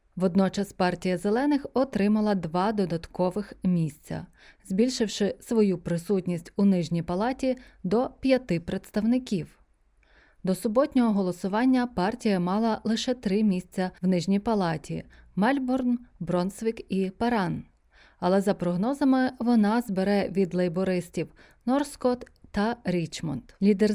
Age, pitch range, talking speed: 20-39, 185-240 Hz, 110 wpm